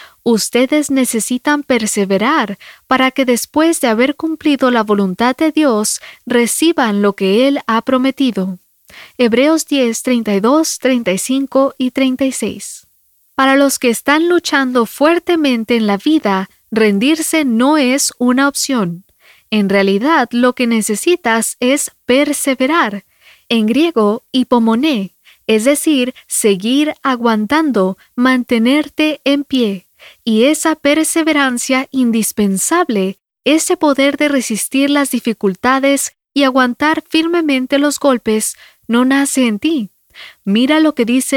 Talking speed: 115 wpm